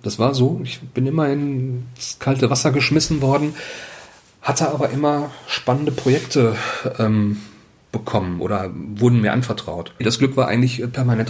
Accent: German